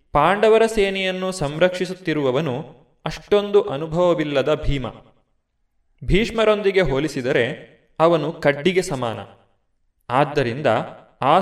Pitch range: 130-180 Hz